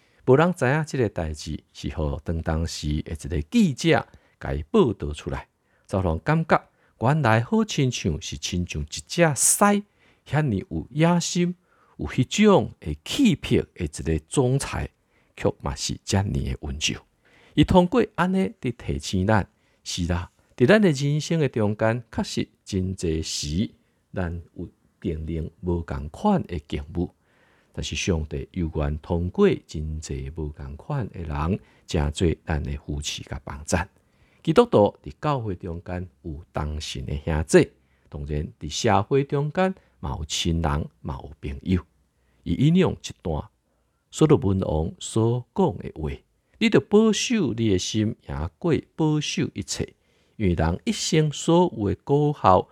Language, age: Chinese, 50-69